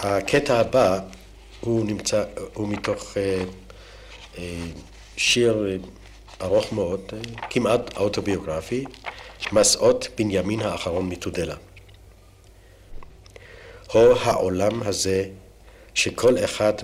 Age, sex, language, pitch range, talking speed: 60-79, male, Hebrew, 95-105 Hz, 70 wpm